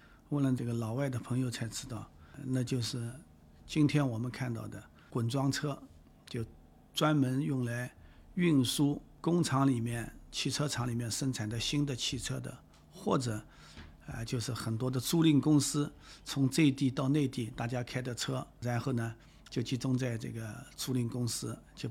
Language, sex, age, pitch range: Chinese, male, 50-69, 115-140 Hz